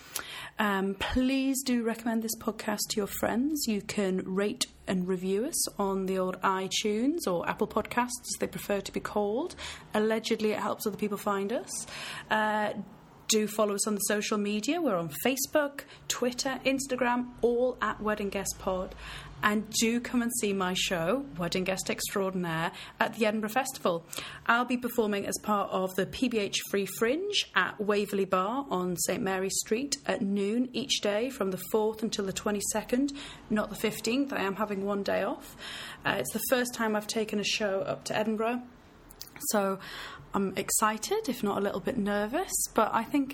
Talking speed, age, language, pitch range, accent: 175 wpm, 30-49, English, 195-245 Hz, British